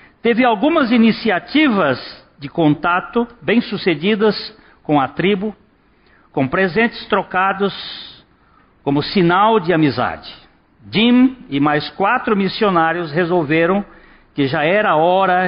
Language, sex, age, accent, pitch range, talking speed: Portuguese, male, 60-79, Brazilian, 150-205 Hz, 100 wpm